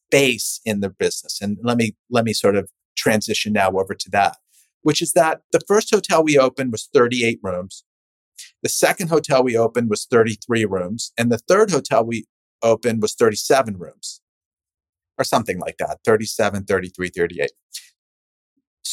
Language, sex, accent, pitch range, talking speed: English, male, American, 110-160 Hz, 160 wpm